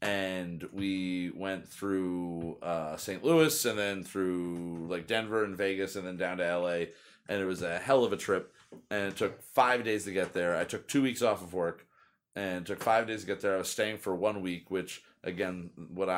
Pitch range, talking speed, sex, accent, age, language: 85-100 Hz, 215 wpm, male, American, 30-49, English